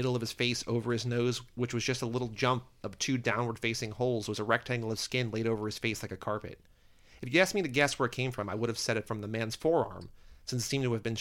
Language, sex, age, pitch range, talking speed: English, male, 30-49, 110-130 Hz, 290 wpm